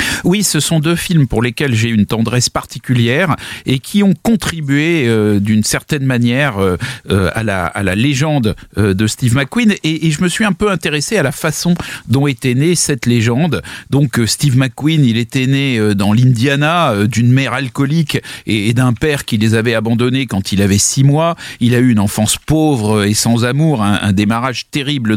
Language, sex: French, male